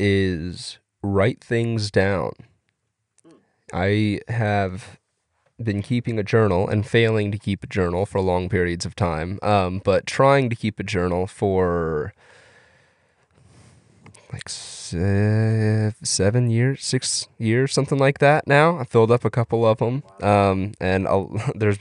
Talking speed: 130 wpm